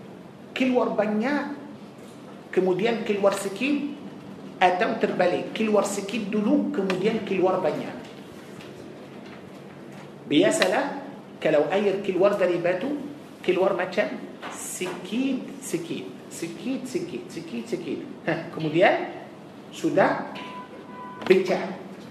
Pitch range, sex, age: 180-240 Hz, male, 50-69